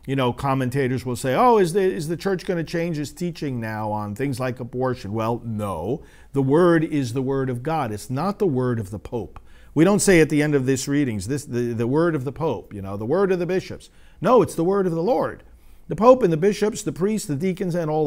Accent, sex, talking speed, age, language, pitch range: American, male, 260 wpm, 50-69, English, 100-165 Hz